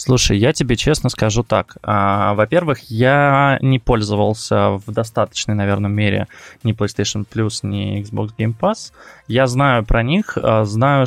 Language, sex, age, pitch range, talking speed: Russian, male, 20-39, 110-140 Hz, 140 wpm